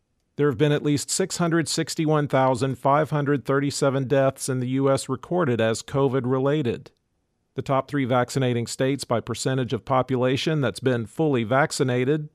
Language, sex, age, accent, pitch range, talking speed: English, male, 50-69, American, 120-145 Hz, 125 wpm